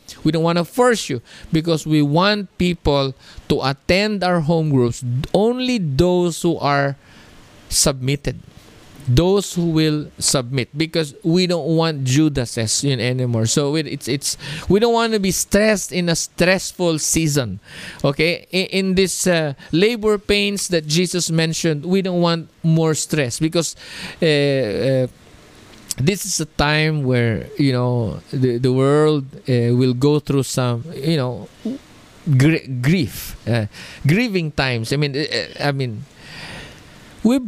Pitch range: 135-180 Hz